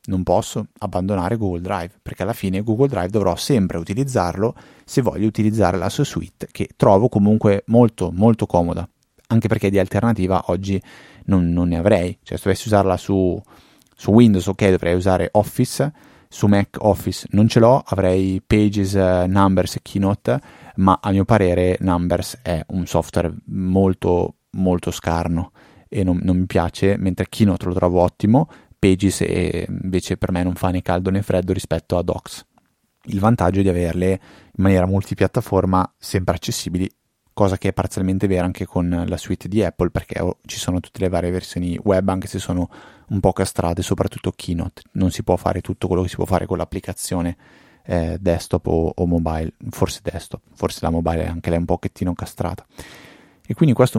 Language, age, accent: Italian, 30-49, native